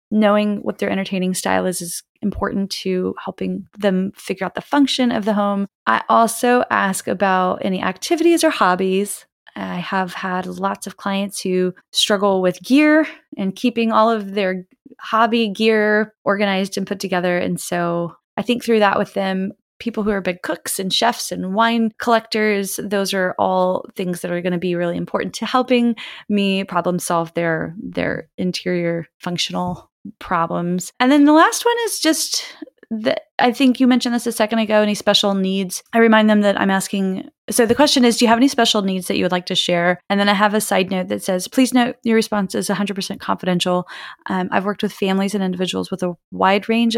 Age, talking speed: 20-39, 195 wpm